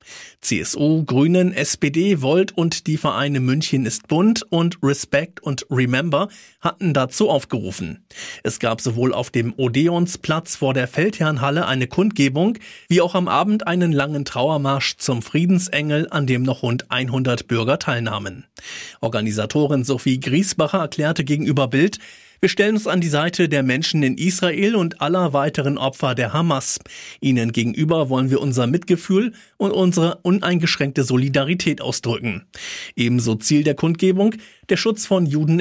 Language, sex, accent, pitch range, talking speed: German, male, German, 130-175 Hz, 145 wpm